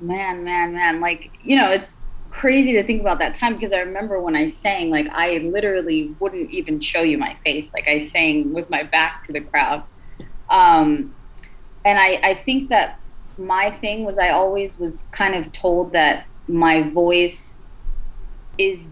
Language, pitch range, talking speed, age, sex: English, 155-225 Hz, 180 wpm, 20-39, female